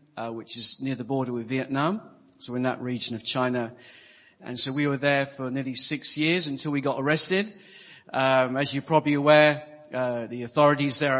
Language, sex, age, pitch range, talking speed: English, male, 40-59, 130-160 Hz, 200 wpm